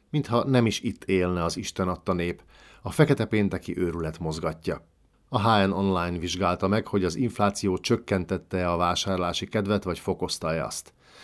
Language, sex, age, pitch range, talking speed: Hungarian, male, 50-69, 90-115 Hz, 155 wpm